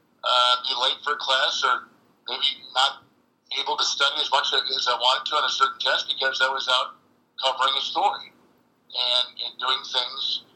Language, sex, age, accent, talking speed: English, male, 50-69, American, 180 wpm